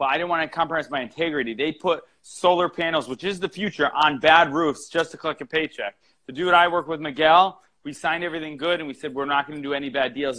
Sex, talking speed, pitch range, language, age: male, 260 wpm, 140-170 Hz, Telugu, 30-49